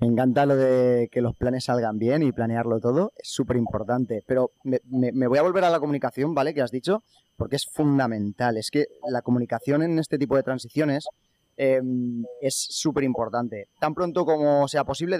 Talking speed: 195 wpm